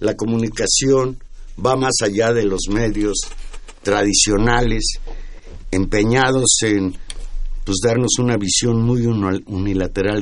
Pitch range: 95-130 Hz